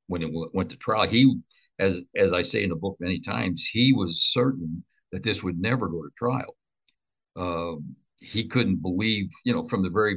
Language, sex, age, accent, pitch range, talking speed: English, male, 60-79, American, 85-110 Hz, 205 wpm